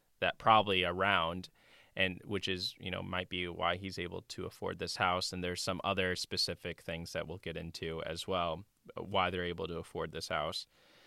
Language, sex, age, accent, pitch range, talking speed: English, male, 10-29, American, 90-105 Hz, 195 wpm